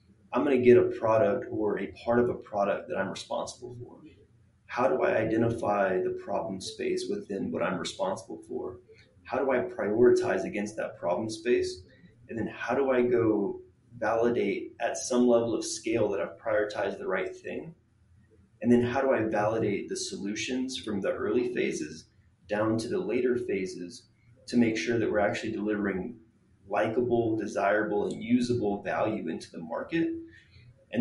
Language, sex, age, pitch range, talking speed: English, male, 20-39, 110-180 Hz, 170 wpm